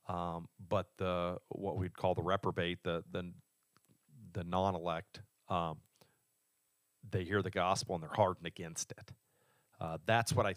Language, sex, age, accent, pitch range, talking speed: English, male, 40-59, American, 90-120 Hz, 150 wpm